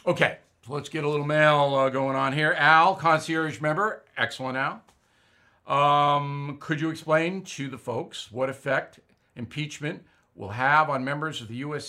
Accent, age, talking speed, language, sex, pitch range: American, 50-69, 160 wpm, English, male, 125-165 Hz